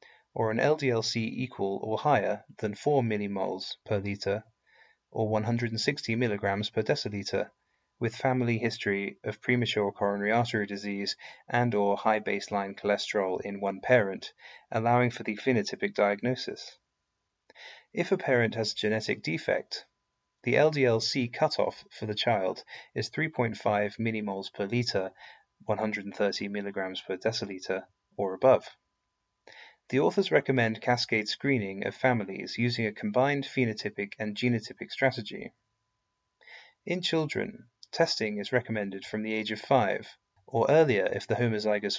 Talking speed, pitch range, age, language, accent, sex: 130 wpm, 105-125 Hz, 30-49, English, British, male